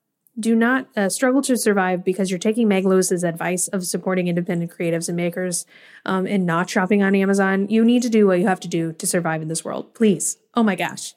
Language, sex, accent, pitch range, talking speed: English, female, American, 185-220 Hz, 225 wpm